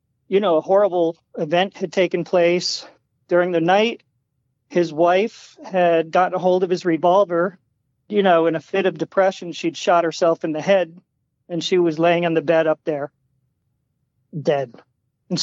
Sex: male